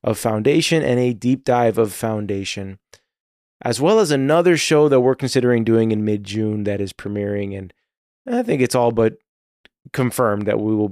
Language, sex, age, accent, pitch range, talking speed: English, male, 20-39, American, 105-125 Hz, 175 wpm